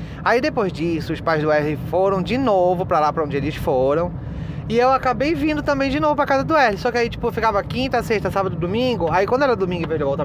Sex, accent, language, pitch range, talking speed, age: male, Brazilian, Portuguese, 155-220 Hz, 260 wpm, 20-39